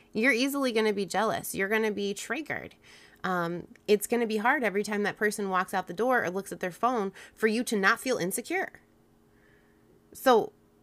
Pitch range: 160-210 Hz